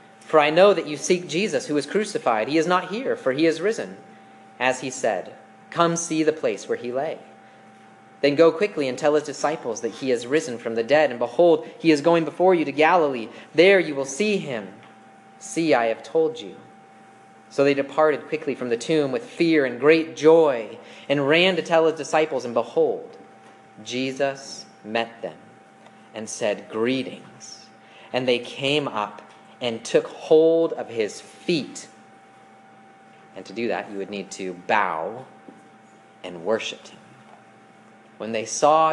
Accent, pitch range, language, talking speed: American, 110-155 Hz, English, 175 wpm